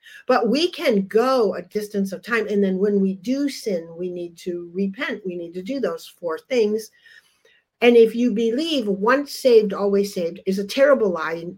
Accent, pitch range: American, 175-235 Hz